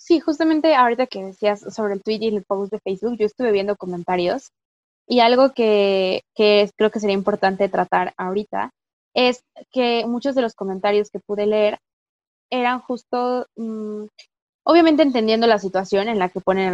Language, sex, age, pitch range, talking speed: Spanish, female, 20-39, 190-235 Hz, 175 wpm